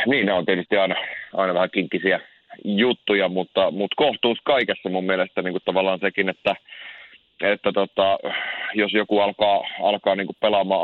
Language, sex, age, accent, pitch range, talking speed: Finnish, male, 30-49, native, 90-110 Hz, 135 wpm